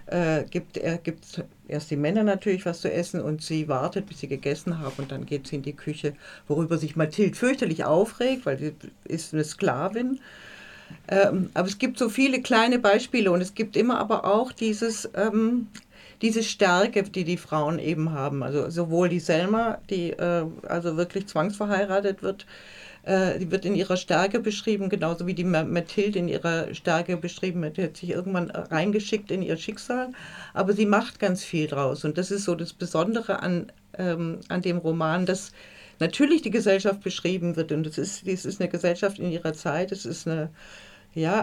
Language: German